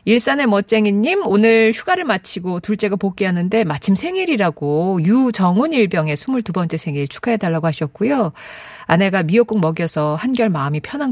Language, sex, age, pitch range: Korean, female, 40-59, 170-245 Hz